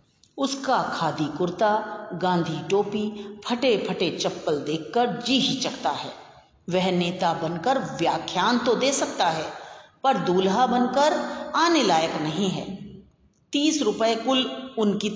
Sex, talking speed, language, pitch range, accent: female, 125 wpm, Hindi, 190-260 Hz, native